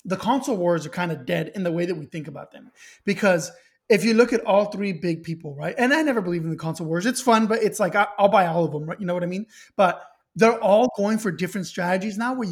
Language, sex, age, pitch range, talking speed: English, male, 20-39, 175-220 Hz, 280 wpm